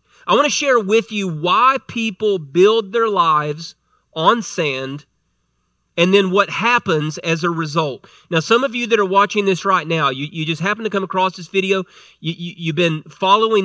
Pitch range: 160-200 Hz